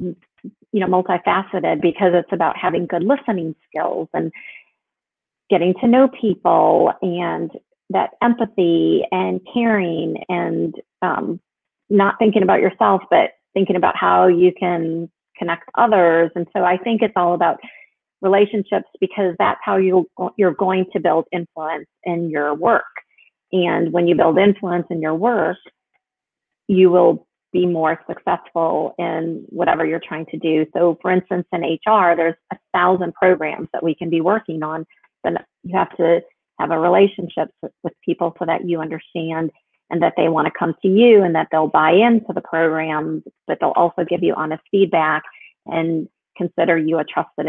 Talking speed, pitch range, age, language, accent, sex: 160 wpm, 165-195 Hz, 40-59, English, American, female